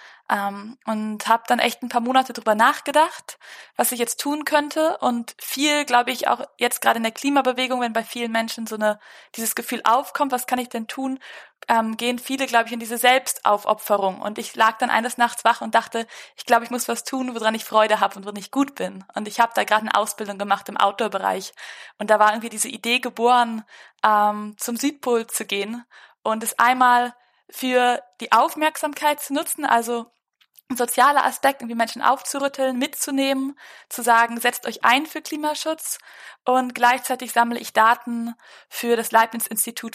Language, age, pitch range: German, 20-39, 215-250 Hz